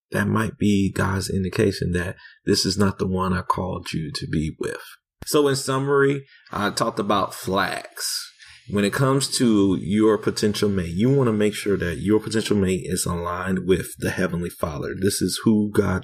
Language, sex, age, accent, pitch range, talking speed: English, male, 30-49, American, 95-115 Hz, 185 wpm